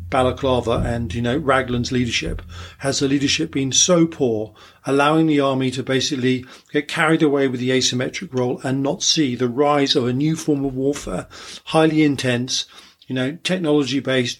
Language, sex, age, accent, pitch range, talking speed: English, male, 40-59, British, 125-145 Hz, 165 wpm